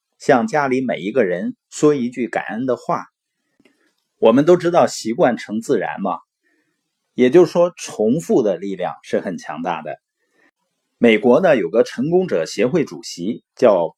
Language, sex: Chinese, male